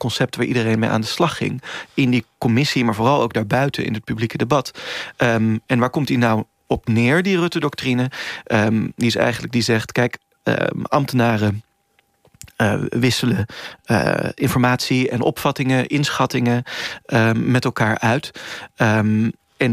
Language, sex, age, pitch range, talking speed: Dutch, male, 30-49, 115-130 Hz, 140 wpm